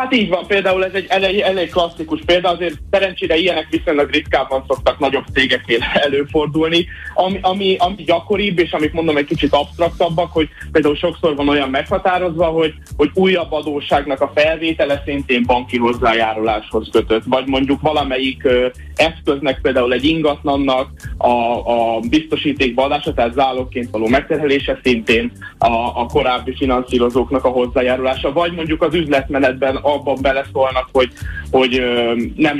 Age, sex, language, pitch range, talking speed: 20-39, male, Hungarian, 130-165 Hz, 140 wpm